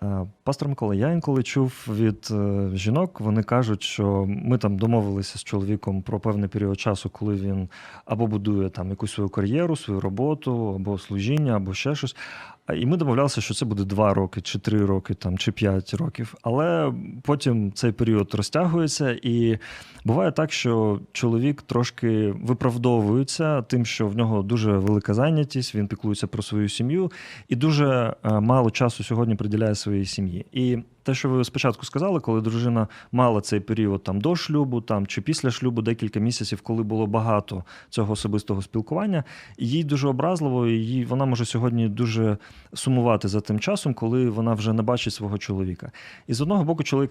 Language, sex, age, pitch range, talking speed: Ukrainian, male, 30-49, 105-130 Hz, 165 wpm